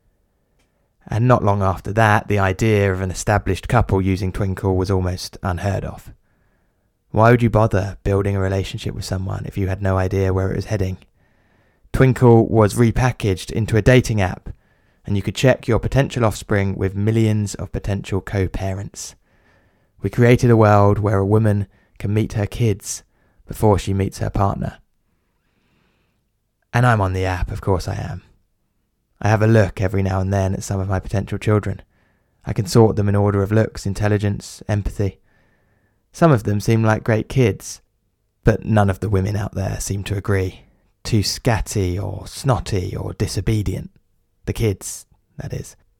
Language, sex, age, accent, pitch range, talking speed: English, male, 20-39, British, 95-110 Hz, 170 wpm